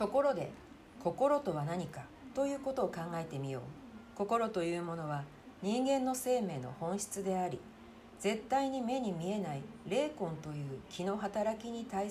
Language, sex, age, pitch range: Japanese, female, 50-69, 150-225 Hz